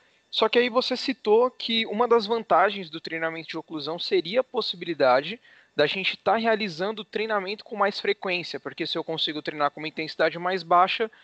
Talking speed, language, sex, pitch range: 190 wpm, Portuguese, male, 160-210 Hz